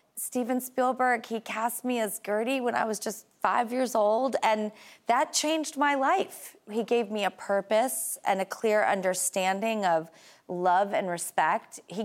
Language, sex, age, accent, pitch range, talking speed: English, female, 30-49, American, 180-230 Hz, 165 wpm